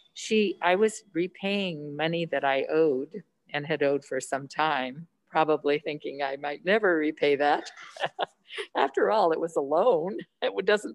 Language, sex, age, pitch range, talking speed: English, female, 50-69, 155-200 Hz, 155 wpm